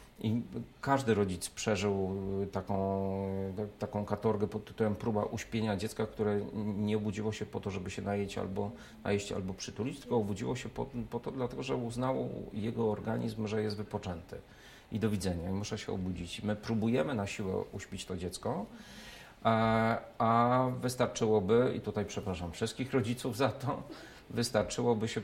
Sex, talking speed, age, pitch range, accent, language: male, 150 wpm, 40-59, 100-115 Hz, native, Polish